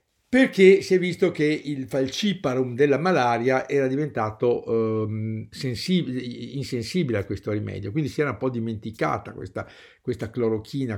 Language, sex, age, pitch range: Italian, male, 50-69, 110-135 Hz